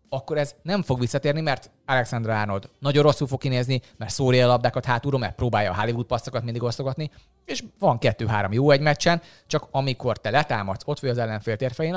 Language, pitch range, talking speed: Hungarian, 110-145 Hz, 190 wpm